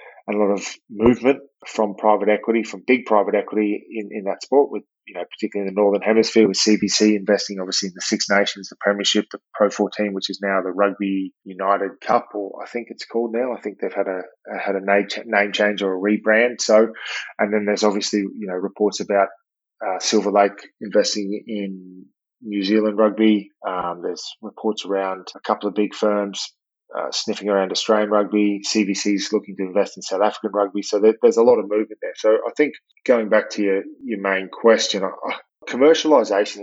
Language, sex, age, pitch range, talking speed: English, male, 20-39, 100-110 Hz, 200 wpm